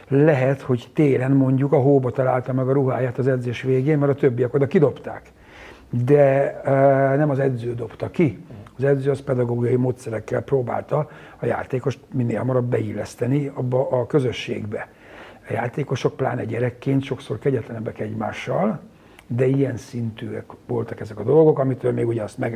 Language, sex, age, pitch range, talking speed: Hungarian, male, 60-79, 120-140 Hz, 155 wpm